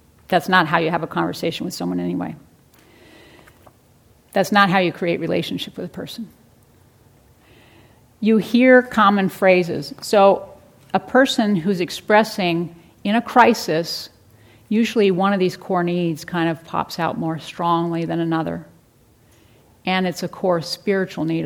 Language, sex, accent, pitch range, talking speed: English, female, American, 145-195 Hz, 145 wpm